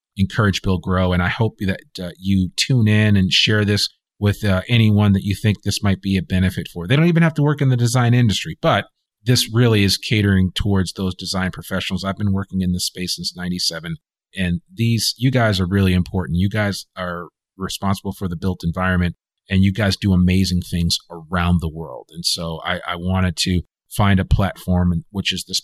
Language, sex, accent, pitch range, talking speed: English, male, American, 90-105 Hz, 210 wpm